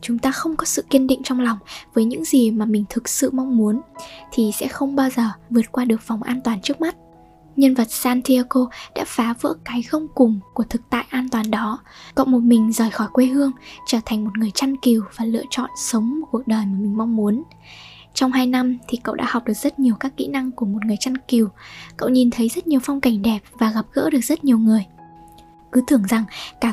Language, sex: Vietnamese, female